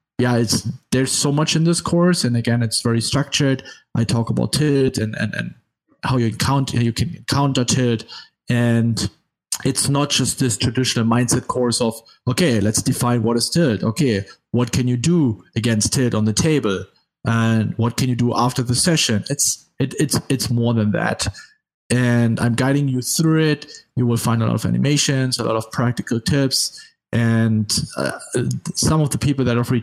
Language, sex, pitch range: English, male, 115-135 Hz